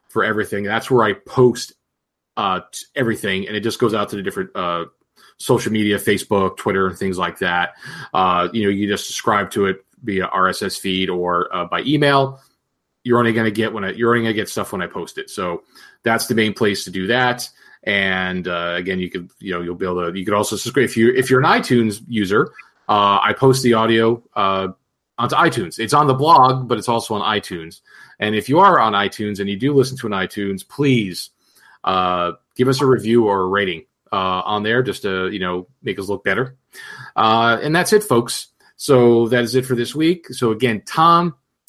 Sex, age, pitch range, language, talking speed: male, 30-49, 100-130 Hz, English, 220 wpm